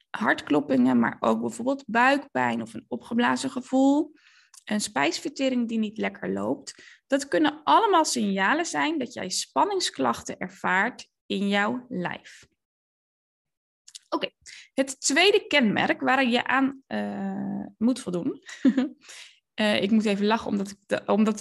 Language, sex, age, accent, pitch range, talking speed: Dutch, female, 10-29, Dutch, 200-270 Hz, 130 wpm